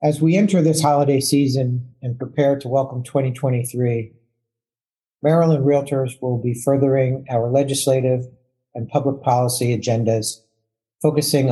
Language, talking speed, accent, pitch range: English, 120 wpm, American, 115-135 Hz